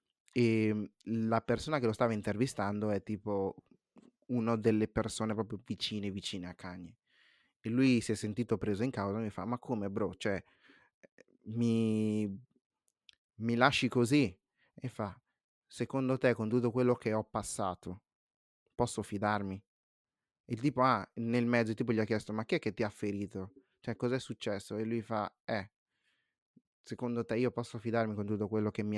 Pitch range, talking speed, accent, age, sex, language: 105-125 Hz, 170 wpm, native, 30-49, male, Italian